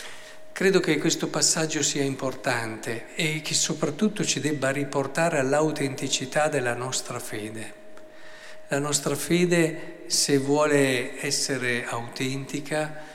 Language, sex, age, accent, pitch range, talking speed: Italian, male, 50-69, native, 135-175 Hz, 105 wpm